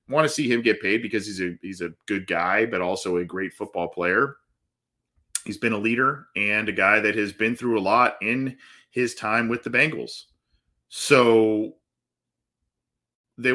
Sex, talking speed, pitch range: male, 175 wpm, 100-125 Hz